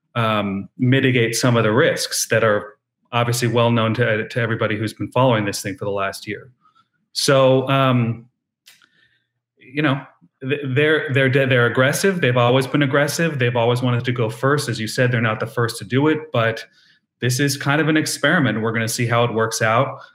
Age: 30-49